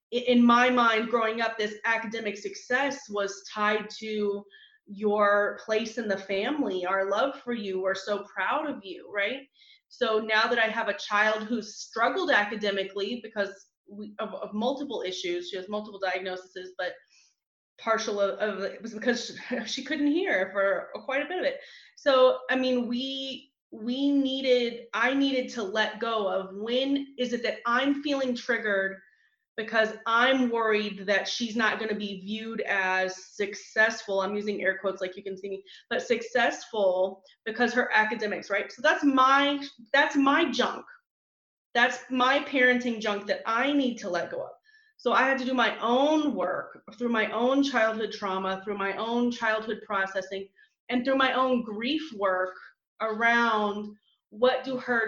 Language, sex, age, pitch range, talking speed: English, female, 20-39, 205-255 Hz, 165 wpm